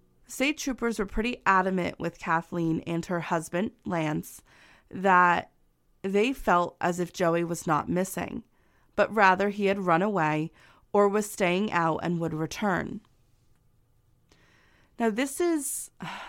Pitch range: 170-205 Hz